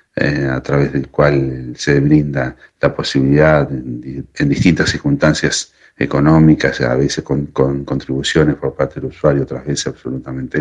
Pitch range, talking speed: 70-80 Hz, 135 wpm